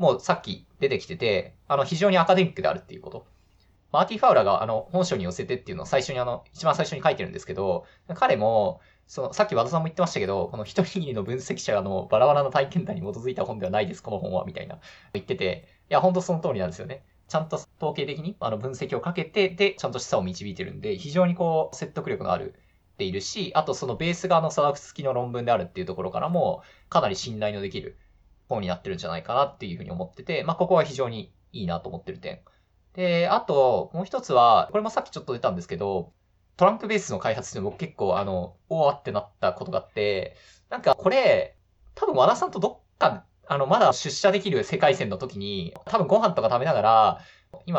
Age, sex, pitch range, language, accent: 20-39, male, 125-195 Hz, Japanese, native